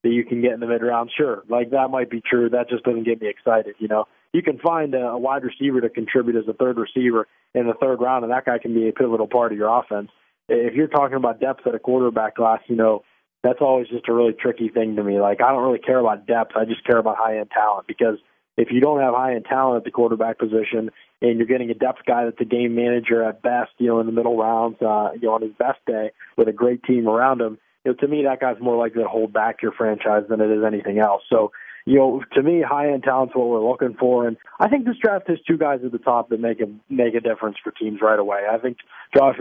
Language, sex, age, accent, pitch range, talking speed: English, male, 20-39, American, 115-130 Hz, 270 wpm